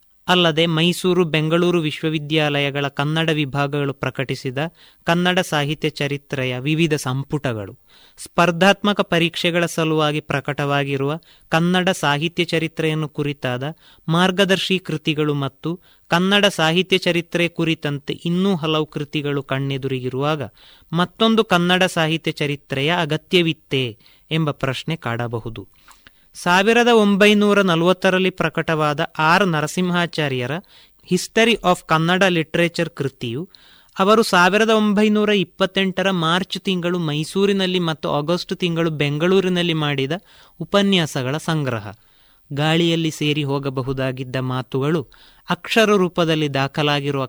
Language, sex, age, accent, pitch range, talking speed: Kannada, male, 30-49, native, 145-180 Hz, 90 wpm